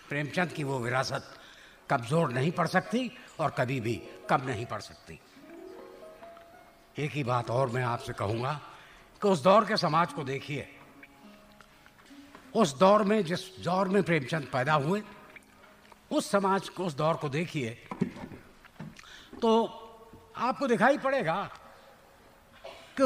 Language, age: Hindi, 60-79